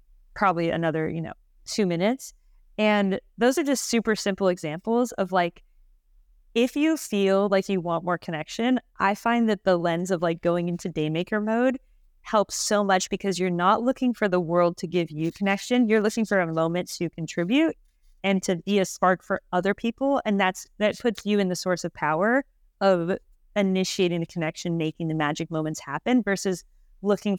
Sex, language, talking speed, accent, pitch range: female, English, 185 wpm, American, 175-220 Hz